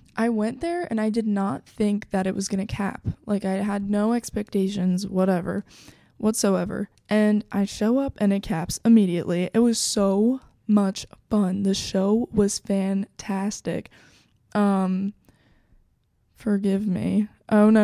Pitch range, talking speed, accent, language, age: 190-210 Hz, 145 wpm, American, English, 20-39